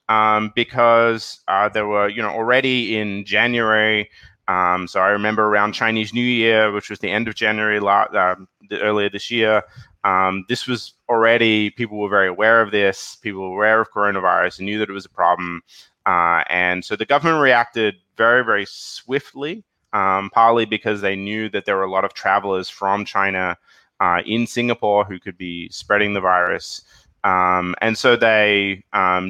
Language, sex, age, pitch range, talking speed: English, male, 20-39, 95-115 Hz, 175 wpm